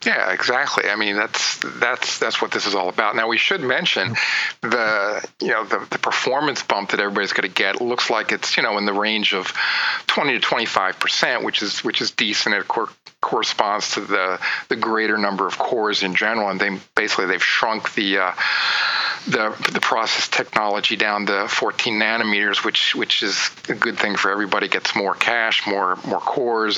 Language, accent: English, American